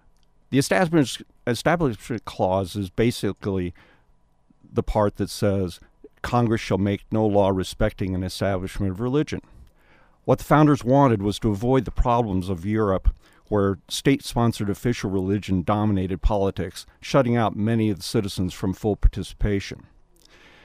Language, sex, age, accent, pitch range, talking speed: English, male, 50-69, American, 95-120 Hz, 135 wpm